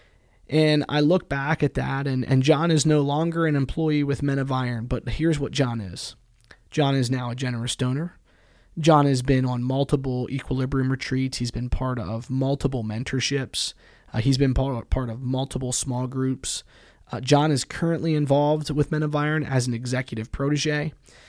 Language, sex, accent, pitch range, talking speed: English, male, American, 125-150 Hz, 180 wpm